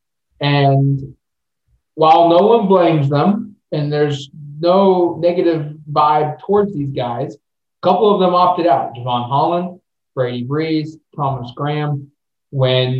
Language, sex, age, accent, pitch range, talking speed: English, male, 20-39, American, 135-160 Hz, 125 wpm